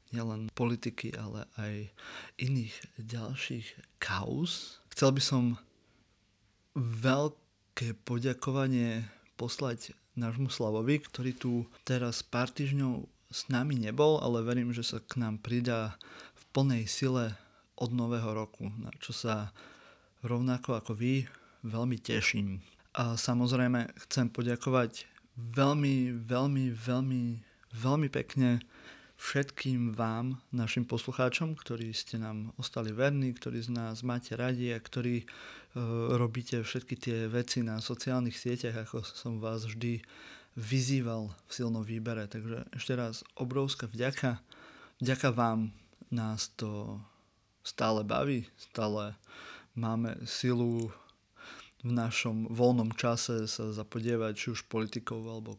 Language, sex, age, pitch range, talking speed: Slovak, male, 30-49, 110-125 Hz, 120 wpm